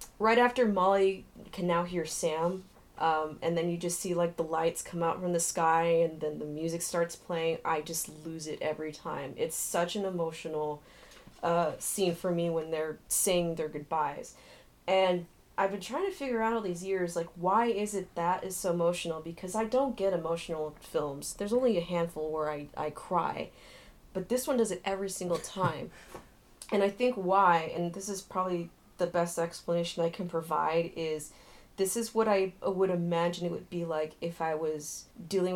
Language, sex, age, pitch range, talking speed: English, female, 20-39, 165-190 Hz, 195 wpm